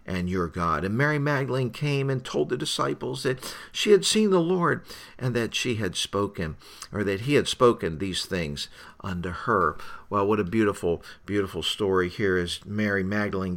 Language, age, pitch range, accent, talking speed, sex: English, 50-69, 95-130 Hz, American, 180 wpm, male